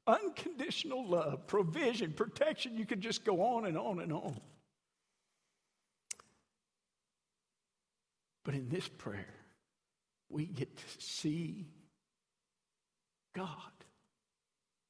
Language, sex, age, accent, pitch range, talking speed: English, male, 60-79, American, 150-190 Hz, 90 wpm